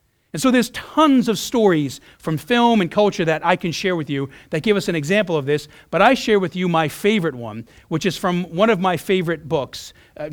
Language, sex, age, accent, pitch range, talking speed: English, male, 40-59, American, 145-185 Hz, 225 wpm